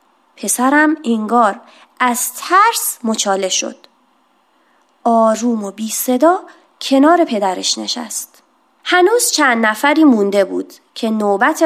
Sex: female